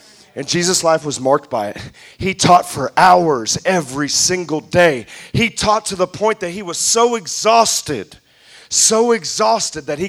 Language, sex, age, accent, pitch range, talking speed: English, male, 40-59, American, 185-255 Hz, 165 wpm